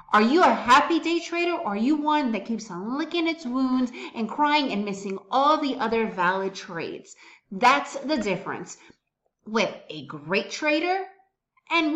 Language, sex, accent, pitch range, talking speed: English, female, American, 200-300 Hz, 165 wpm